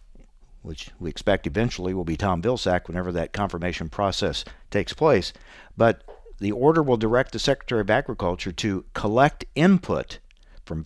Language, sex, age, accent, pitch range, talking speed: English, male, 50-69, American, 95-125 Hz, 150 wpm